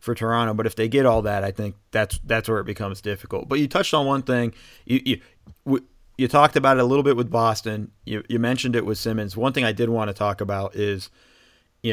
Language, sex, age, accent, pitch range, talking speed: English, male, 30-49, American, 105-125 Hz, 250 wpm